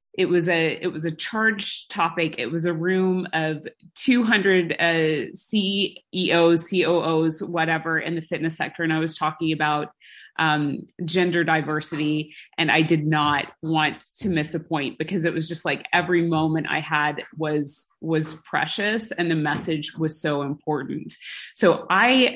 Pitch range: 160-185 Hz